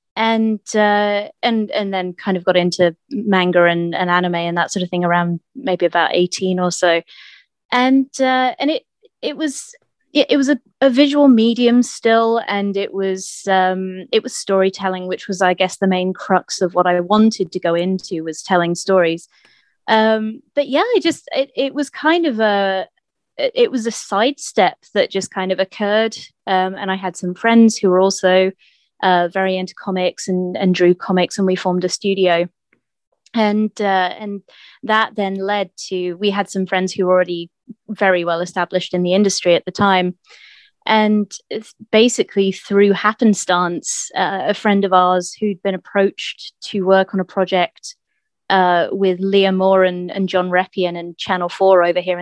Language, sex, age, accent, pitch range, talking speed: English, female, 20-39, British, 180-220 Hz, 180 wpm